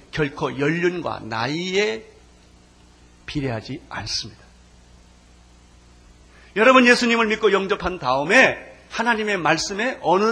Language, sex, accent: Korean, male, native